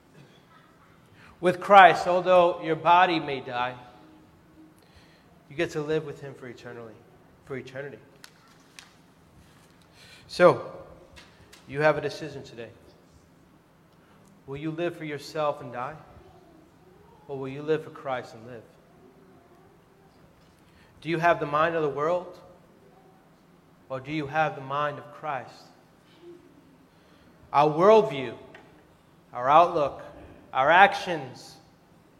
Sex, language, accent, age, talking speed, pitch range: male, English, American, 30-49, 110 wpm, 145-195 Hz